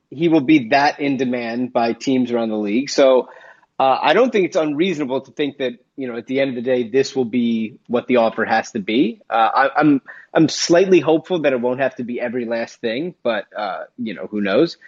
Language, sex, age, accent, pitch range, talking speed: English, male, 30-49, American, 120-155 Hz, 240 wpm